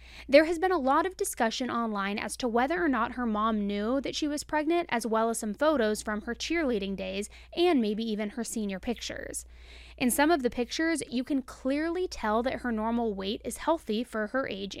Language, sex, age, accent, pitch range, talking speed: English, female, 20-39, American, 230-310 Hz, 215 wpm